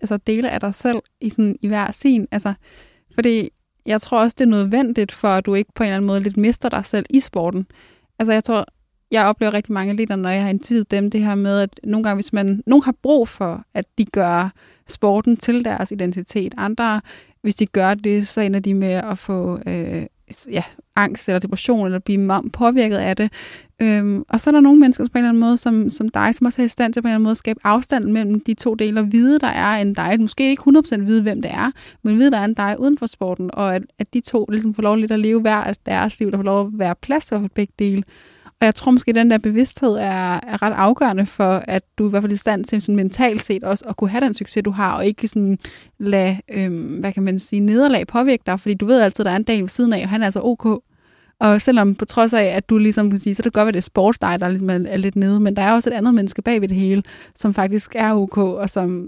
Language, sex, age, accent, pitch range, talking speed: English, female, 20-39, Danish, 195-225 Hz, 270 wpm